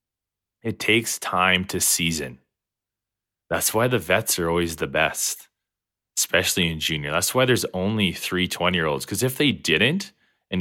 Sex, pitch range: male, 90-105 Hz